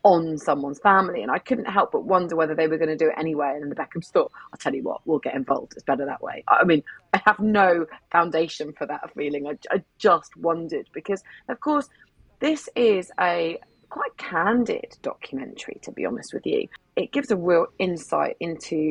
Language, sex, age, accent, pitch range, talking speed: English, female, 30-49, British, 155-220 Hz, 205 wpm